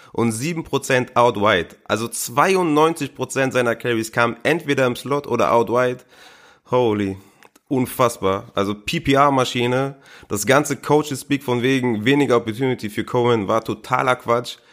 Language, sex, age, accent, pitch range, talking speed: German, male, 30-49, German, 115-140 Hz, 120 wpm